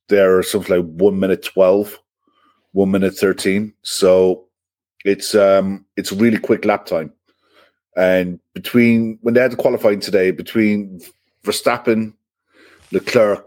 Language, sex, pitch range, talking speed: English, male, 90-105 Hz, 135 wpm